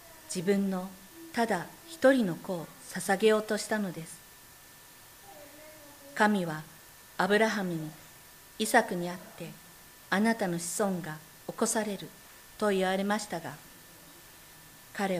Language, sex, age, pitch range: Japanese, female, 50-69, 165-215 Hz